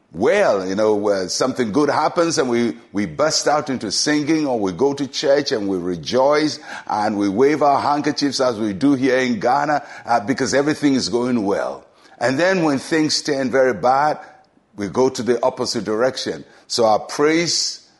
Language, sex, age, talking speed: English, male, 60-79, 185 wpm